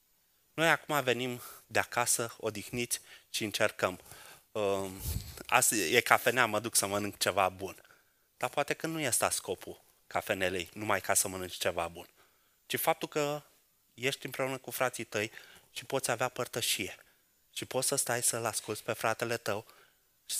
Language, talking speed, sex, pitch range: Romanian, 155 wpm, male, 115-160 Hz